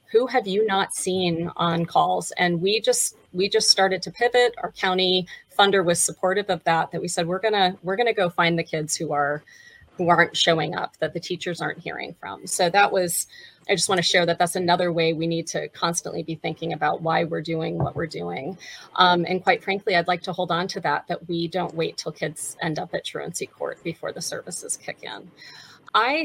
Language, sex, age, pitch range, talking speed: English, female, 30-49, 170-195 Hz, 225 wpm